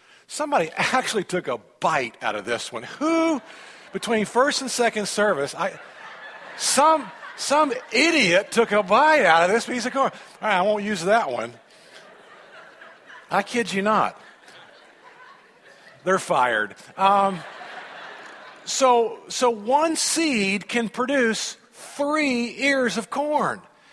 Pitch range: 195-265 Hz